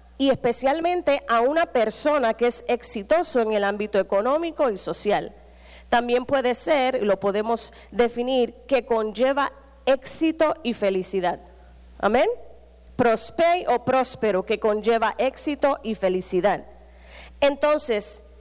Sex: female